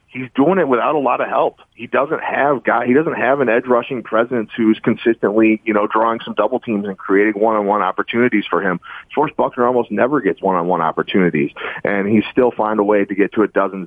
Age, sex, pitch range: 30-49, male, 95-115 Hz